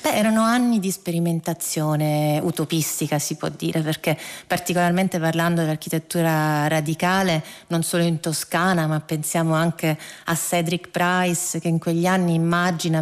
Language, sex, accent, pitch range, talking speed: Italian, female, native, 170-210 Hz, 140 wpm